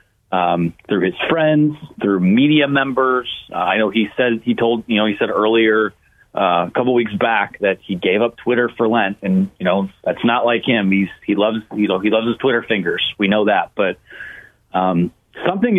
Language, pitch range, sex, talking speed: English, 105-140 Hz, male, 205 wpm